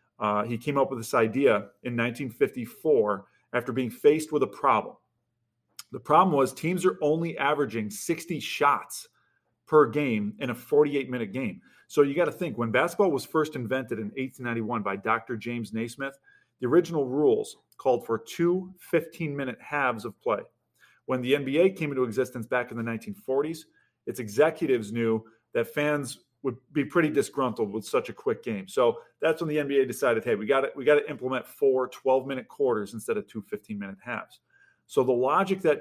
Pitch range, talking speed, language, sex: 120-160 Hz, 175 wpm, English, male